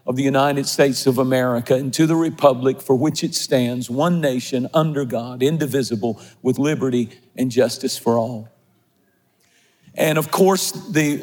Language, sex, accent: English, male, American